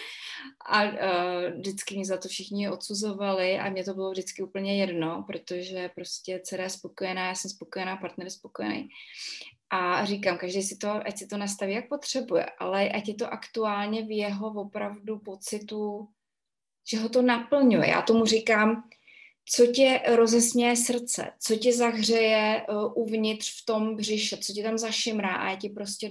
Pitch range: 195-235 Hz